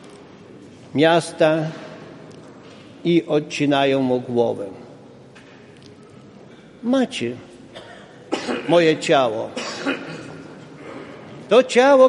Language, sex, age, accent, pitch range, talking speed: Polish, male, 50-69, native, 175-250 Hz, 50 wpm